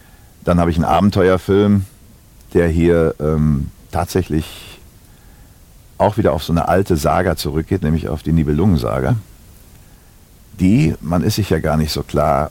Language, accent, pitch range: German, German, 75-95 Hz